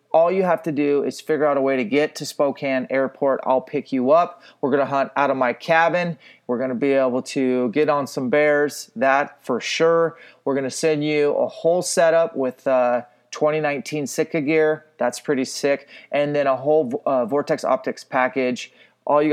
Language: English